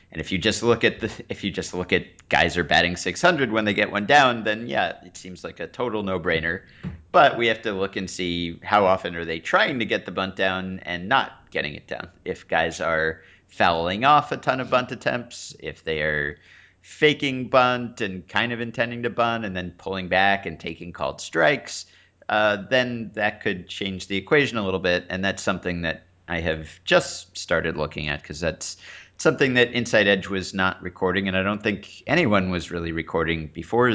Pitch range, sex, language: 85-100 Hz, male, English